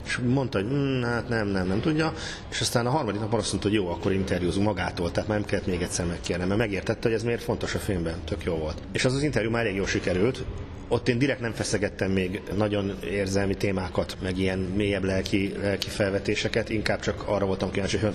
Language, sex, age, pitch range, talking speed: Hungarian, male, 30-49, 100-120 Hz, 215 wpm